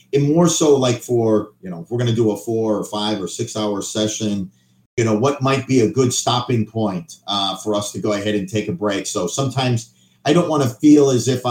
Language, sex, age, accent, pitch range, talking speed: English, male, 50-69, American, 105-135 Hz, 250 wpm